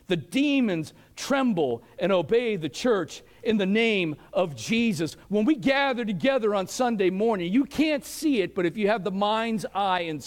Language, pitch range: English, 145-215 Hz